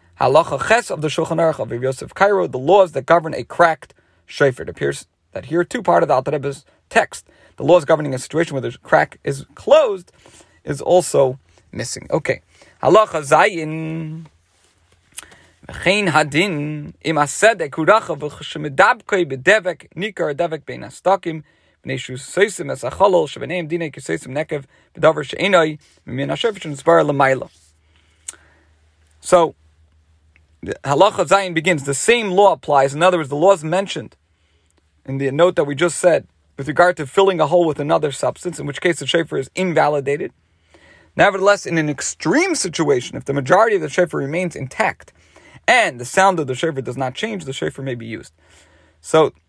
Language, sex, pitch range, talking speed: English, male, 125-175 Hz, 165 wpm